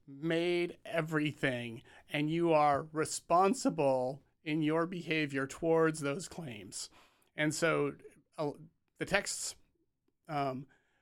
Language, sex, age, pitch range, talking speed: English, male, 30-49, 140-165 Hz, 100 wpm